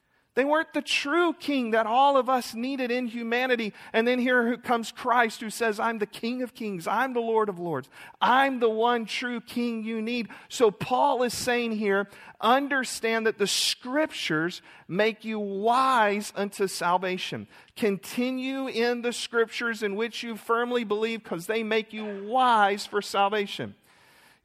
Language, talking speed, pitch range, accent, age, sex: English, 165 wpm, 185-240 Hz, American, 40-59, male